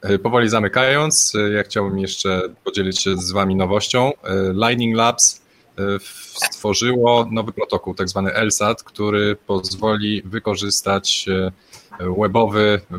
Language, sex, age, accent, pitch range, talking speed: Polish, male, 20-39, native, 90-105 Hz, 100 wpm